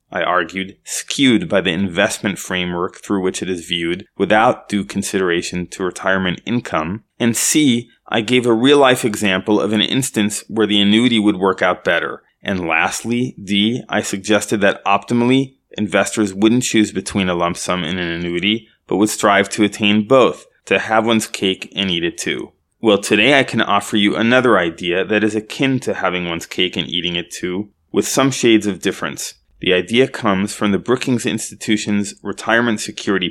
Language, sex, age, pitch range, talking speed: English, male, 20-39, 95-115 Hz, 180 wpm